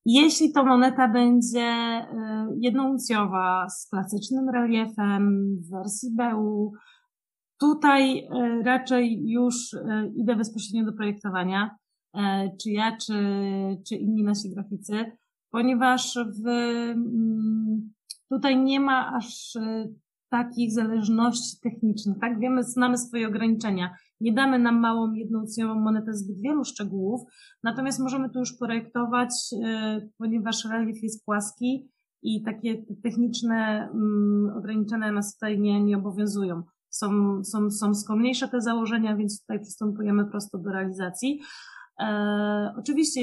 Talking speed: 110 wpm